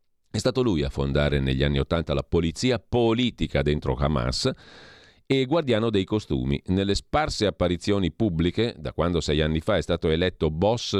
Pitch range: 75-100 Hz